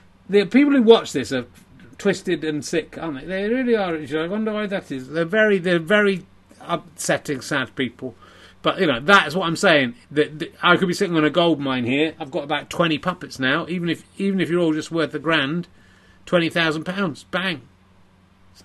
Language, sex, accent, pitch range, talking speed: English, male, British, 150-230 Hz, 210 wpm